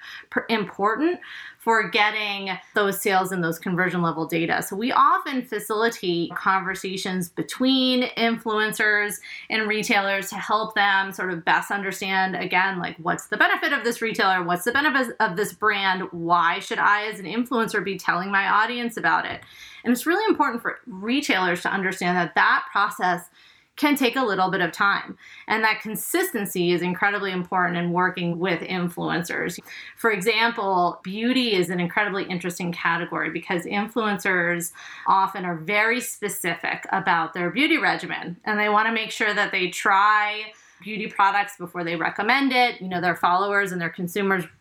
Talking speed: 160 wpm